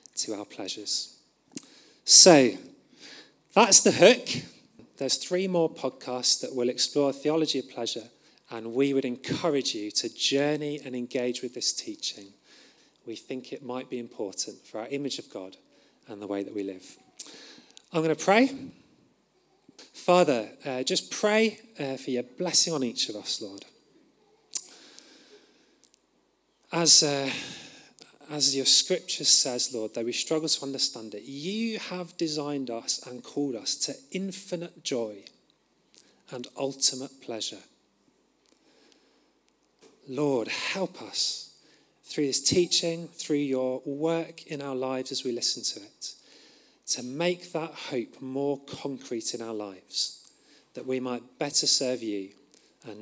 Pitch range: 125-160 Hz